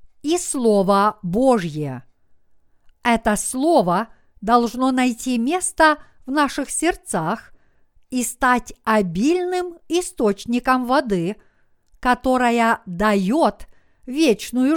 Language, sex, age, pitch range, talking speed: Russian, female, 50-69, 200-290 Hz, 75 wpm